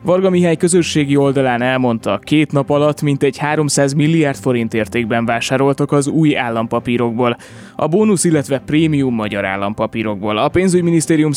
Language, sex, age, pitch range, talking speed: Hungarian, male, 20-39, 115-155 Hz, 130 wpm